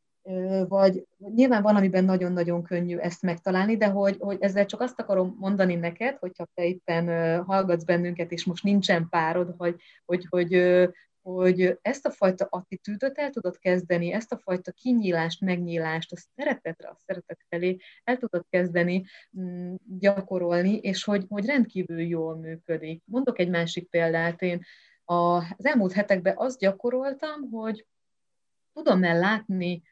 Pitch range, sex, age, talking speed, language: 170-200 Hz, female, 30-49, 140 wpm, Hungarian